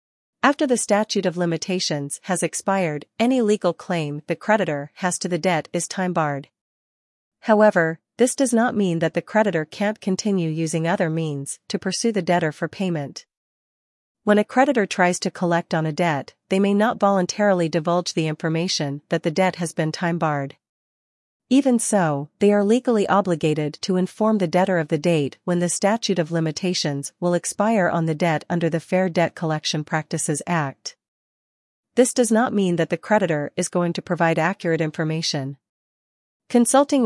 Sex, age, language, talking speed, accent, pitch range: female, 40-59, English, 170 wpm, American, 160-200 Hz